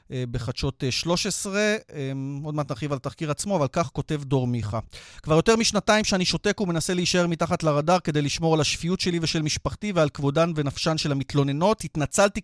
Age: 30-49